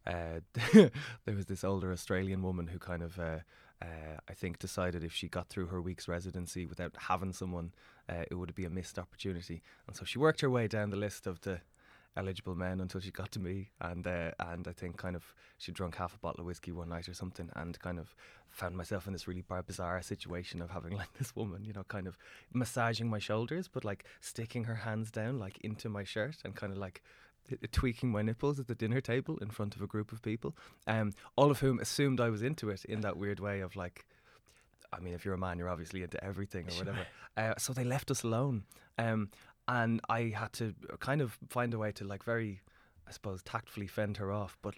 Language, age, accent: English, 20-39, Irish